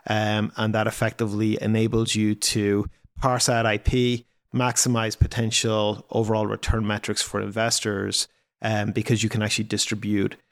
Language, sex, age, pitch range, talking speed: English, male, 30-49, 105-115 Hz, 130 wpm